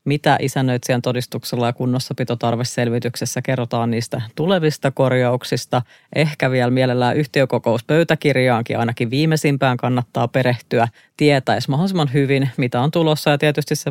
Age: 30-49